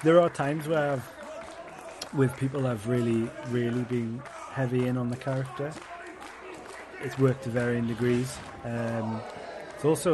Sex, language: male, English